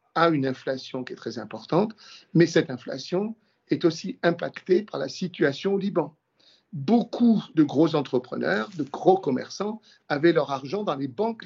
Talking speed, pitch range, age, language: 160 wpm, 130-185 Hz, 50-69, French